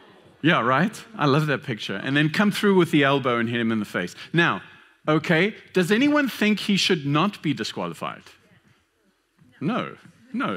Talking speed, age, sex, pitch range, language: 175 wpm, 40-59, male, 140-200 Hz, English